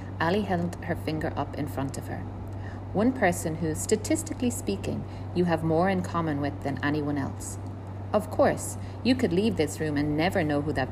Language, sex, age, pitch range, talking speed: English, female, 40-59, 95-155 Hz, 190 wpm